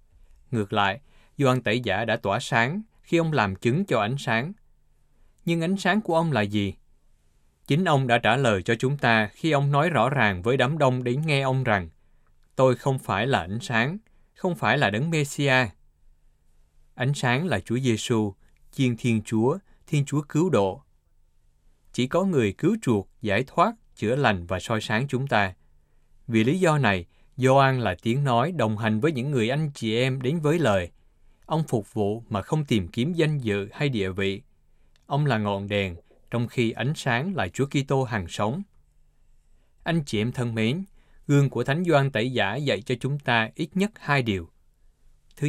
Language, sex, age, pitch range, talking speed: Vietnamese, male, 20-39, 100-140 Hz, 190 wpm